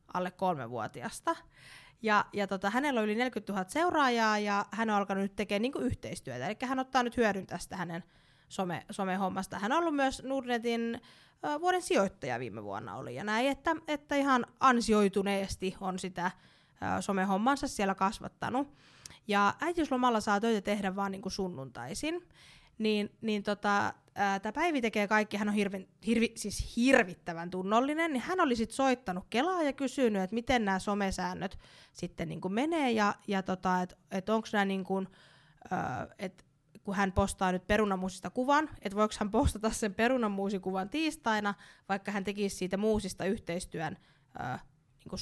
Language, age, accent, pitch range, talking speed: Finnish, 20-39, native, 190-235 Hz, 135 wpm